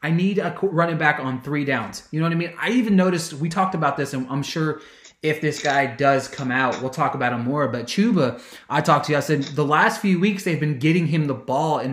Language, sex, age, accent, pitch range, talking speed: English, male, 20-39, American, 130-170 Hz, 265 wpm